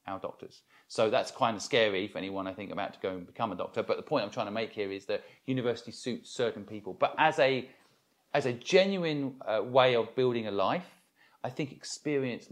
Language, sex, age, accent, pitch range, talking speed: English, male, 40-59, British, 110-145 Hz, 225 wpm